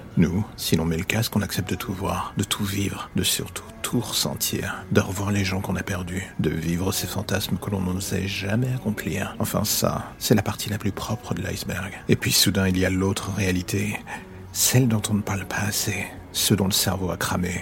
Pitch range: 95-105 Hz